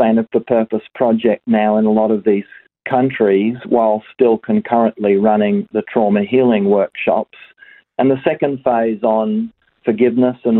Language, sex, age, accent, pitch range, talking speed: English, male, 40-59, Australian, 110-130 Hz, 145 wpm